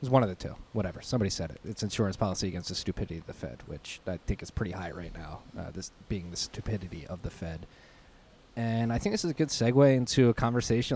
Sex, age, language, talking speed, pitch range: male, 20-39, English, 245 wpm, 95-105 Hz